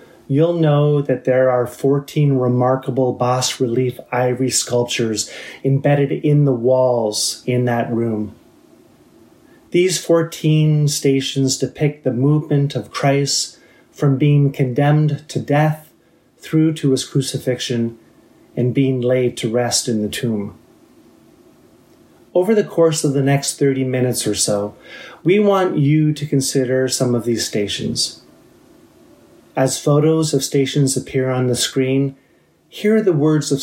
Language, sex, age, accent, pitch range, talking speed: English, male, 30-49, American, 125-145 Hz, 130 wpm